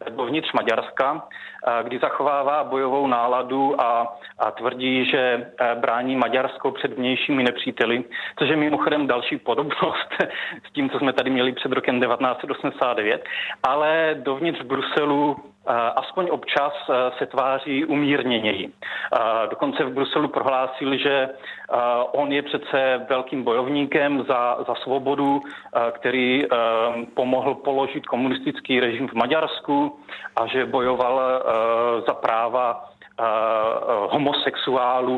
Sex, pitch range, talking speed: male, 125-145 Hz, 110 wpm